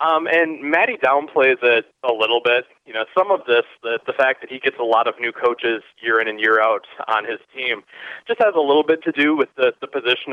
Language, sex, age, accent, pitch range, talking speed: English, male, 20-39, American, 120-175 Hz, 245 wpm